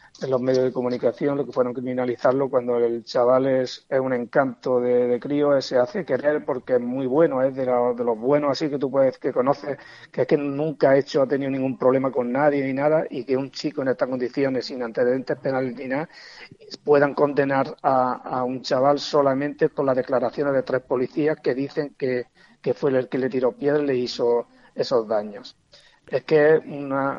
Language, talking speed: Spanish, 210 wpm